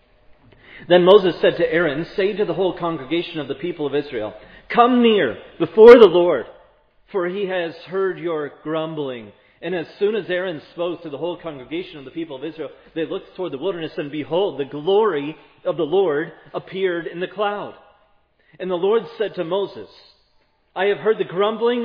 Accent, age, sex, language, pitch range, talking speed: American, 30-49, male, English, 150-200 Hz, 185 wpm